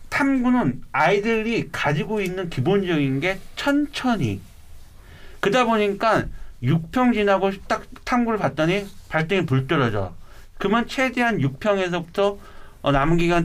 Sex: male